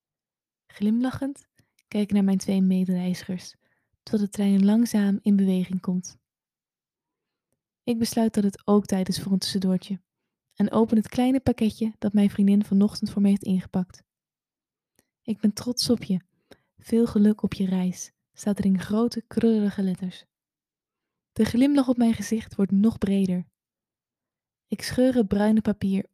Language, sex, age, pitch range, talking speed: Dutch, female, 20-39, 190-220 Hz, 150 wpm